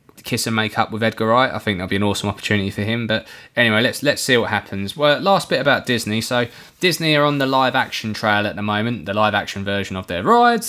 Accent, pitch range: British, 105-125 Hz